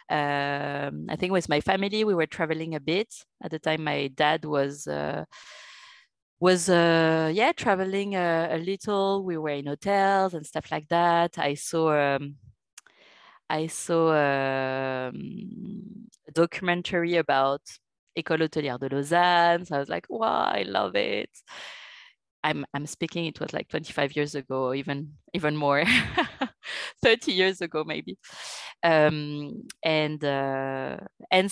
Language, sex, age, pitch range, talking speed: English, female, 20-39, 145-185 Hz, 140 wpm